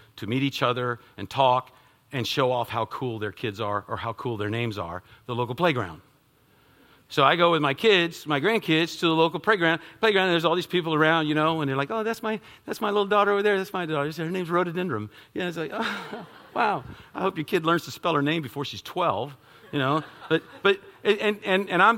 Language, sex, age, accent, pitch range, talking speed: English, male, 50-69, American, 120-180 Hz, 240 wpm